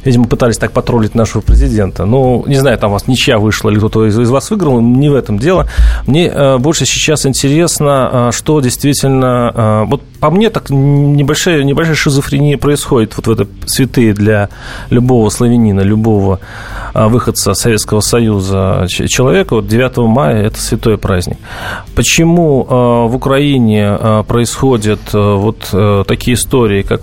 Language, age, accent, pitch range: Russian, 30-49, native, 110-135 Hz